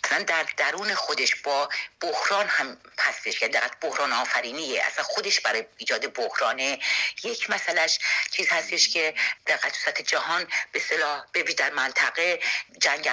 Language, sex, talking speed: English, female, 140 wpm